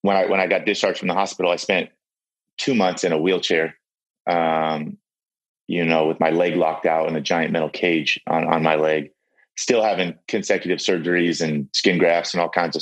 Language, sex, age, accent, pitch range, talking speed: English, male, 30-49, American, 80-90 Hz, 205 wpm